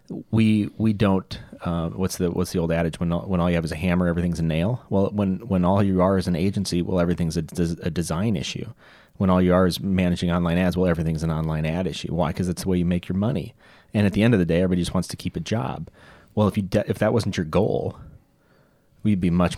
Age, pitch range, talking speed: 30-49, 85-100 Hz, 265 wpm